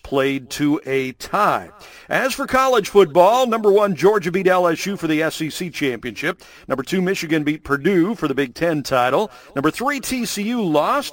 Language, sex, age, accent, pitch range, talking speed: English, male, 50-69, American, 145-195 Hz, 165 wpm